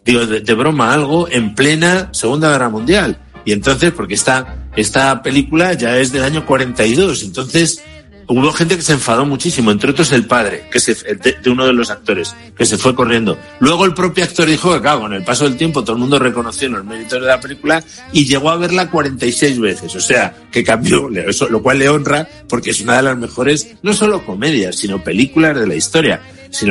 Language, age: Spanish, 60-79